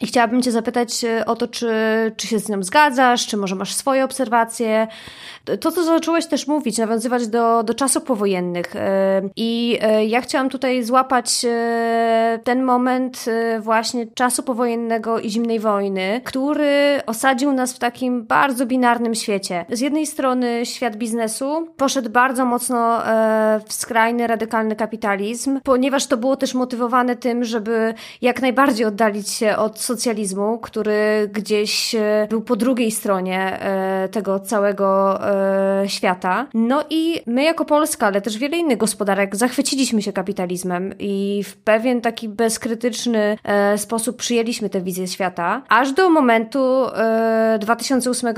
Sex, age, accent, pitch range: female, 20-39, native, 210-250 Hz